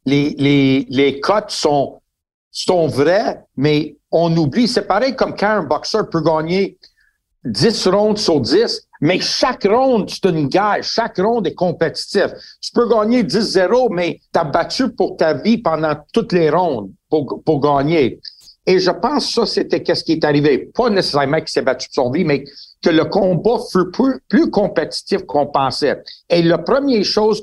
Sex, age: male, 60-79